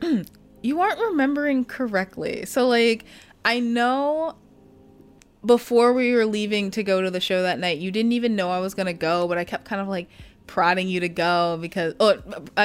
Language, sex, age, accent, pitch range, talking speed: English, female, 20-39, American, 170-215 Hz, 190 wpm